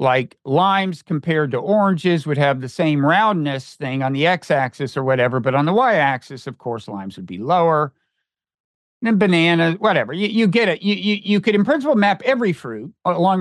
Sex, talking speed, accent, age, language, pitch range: male, 200 wpm, American, 50-69, English, 150-205 Hz